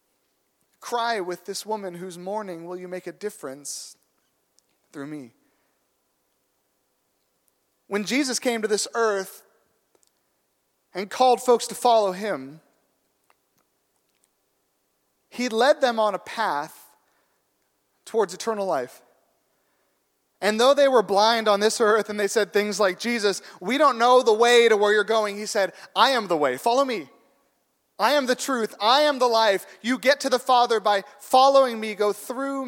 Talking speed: 150 wpm